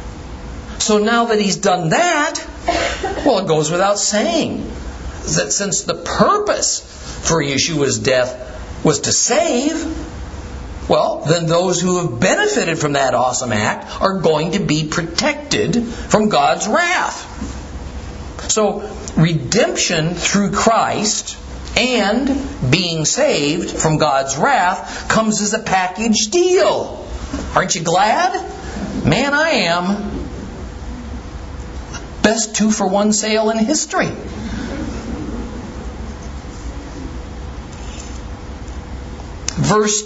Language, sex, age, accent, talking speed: English, male, 50-69, American, 100 wpm